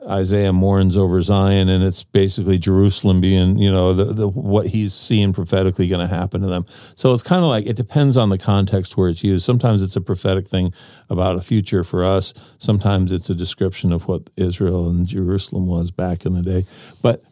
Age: 50-69